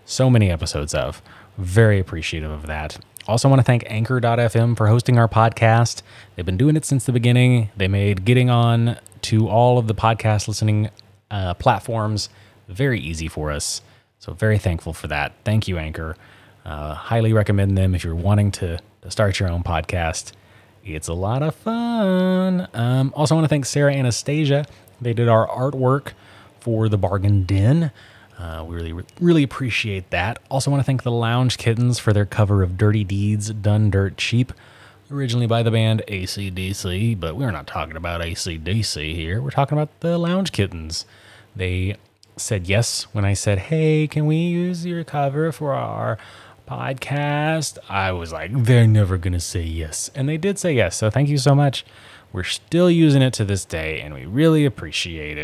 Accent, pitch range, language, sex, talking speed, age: American, 95-130 Hz, English, male, 180 wpm, 30-49